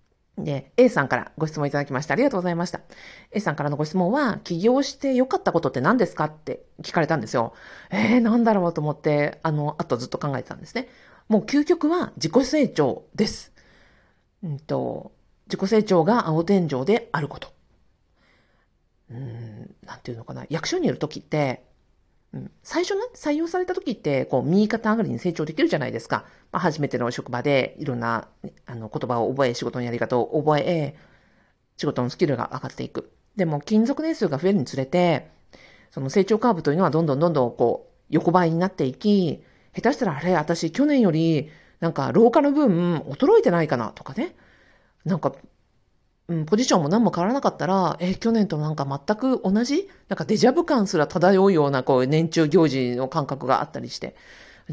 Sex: female